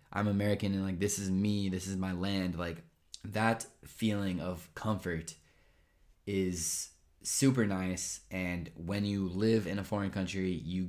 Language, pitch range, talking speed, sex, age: Italian, 90-105 Hz, 155 wpm, male, 20-39